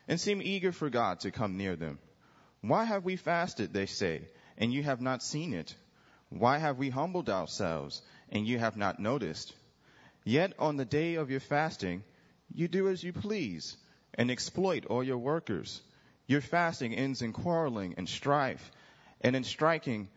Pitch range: 110-160 Hz